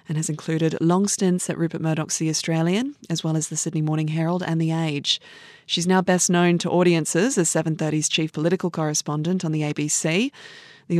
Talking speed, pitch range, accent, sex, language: 190 wpm, 160-190 Hz, Australian, female, English